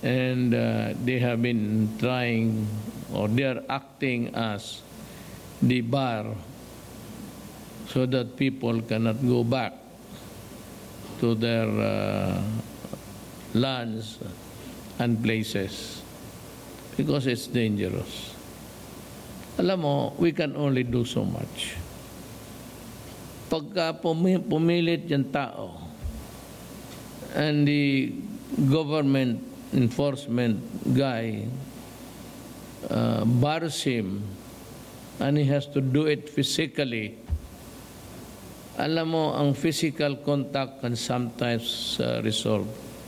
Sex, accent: male, Filipino